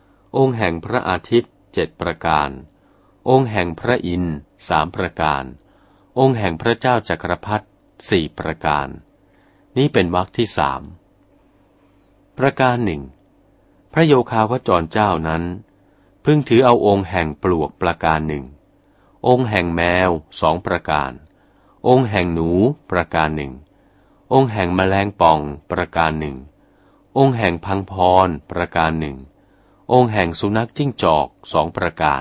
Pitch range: 80-105 Hz